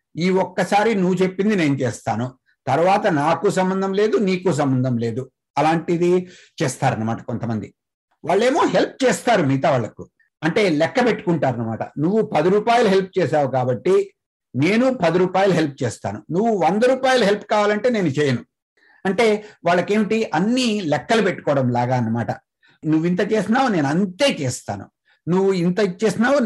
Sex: male